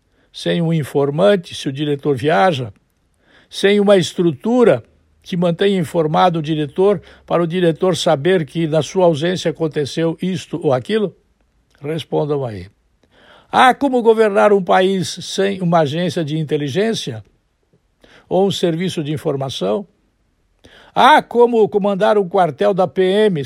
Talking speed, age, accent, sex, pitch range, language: 130 wpm, 60-79, Brazilian, male, 160-205 Hz, Portuguese